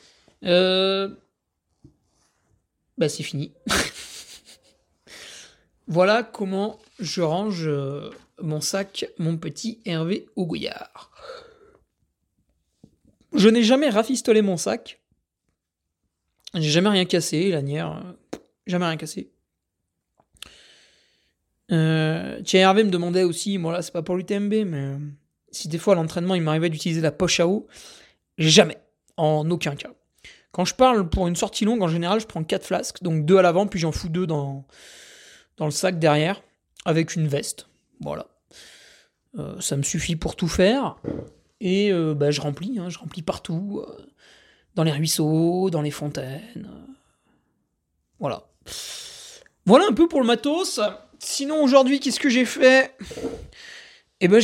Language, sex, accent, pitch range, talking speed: French, male, French, 155-210 Hz, 135 wpm